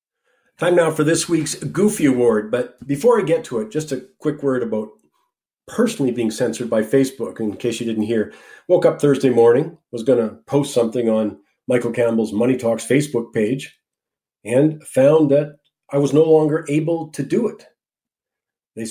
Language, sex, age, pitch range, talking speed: English, male, 40-59, 120-145 Hz, 180 wpm